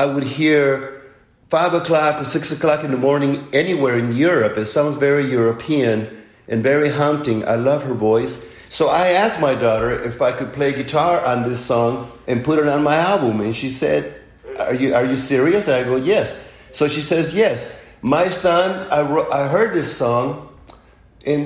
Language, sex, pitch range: Korean, male, 110-150 Hz